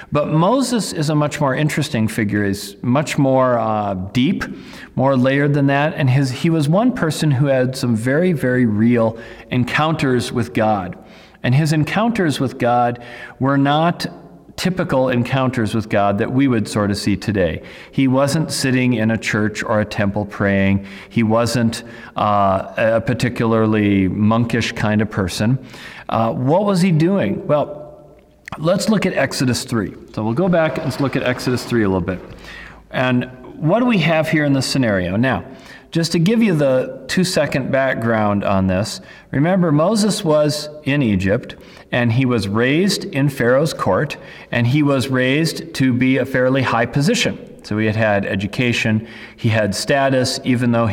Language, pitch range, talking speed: English, 115-150 Hz, 170 wpm